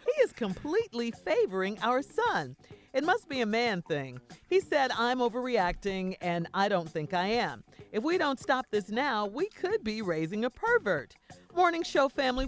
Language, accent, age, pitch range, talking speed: English, American, 40-59, 170-245 Hz, 180 wpm